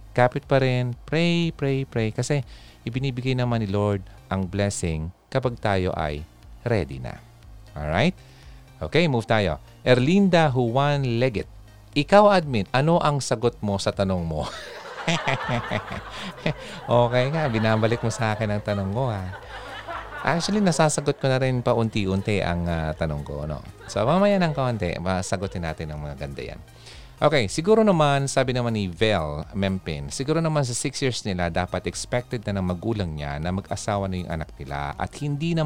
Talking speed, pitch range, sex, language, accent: 160 wpm, 90-135 Hz, male, Filipino, native